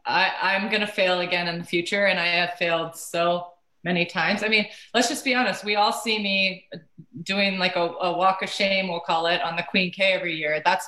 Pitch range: 170-200 Hz